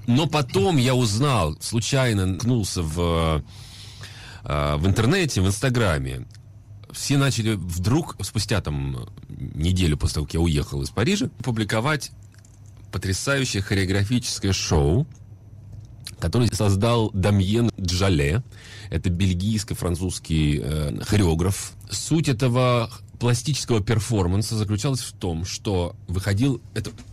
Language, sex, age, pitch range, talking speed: Russian, male, 30-49, 90-115 Hz, 100 wpm